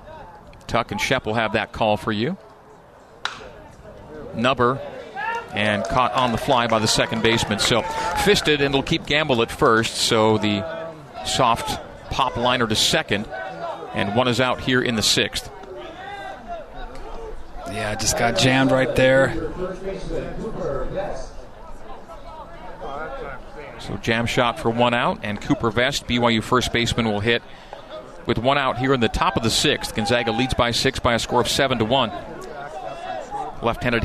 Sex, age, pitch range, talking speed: male, 40-59, 115-135 Hz, 150 wpm